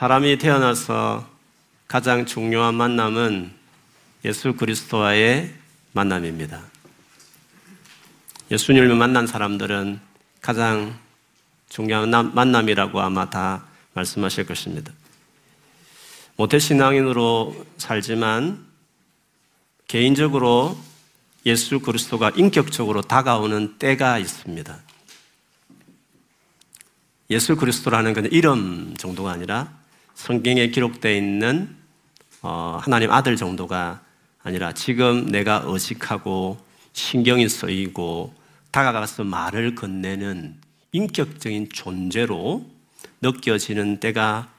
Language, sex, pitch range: Korean, male, 105-135 Hz